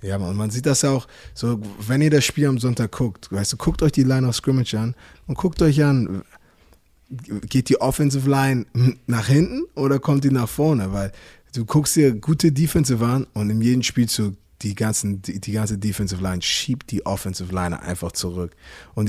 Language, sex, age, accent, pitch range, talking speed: German, male, 20-39, German, 95-130 Hz, 190 wpm